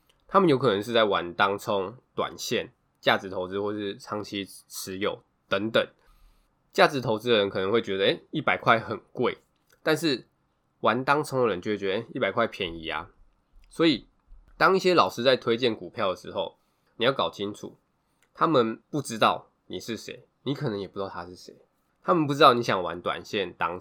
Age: 20-39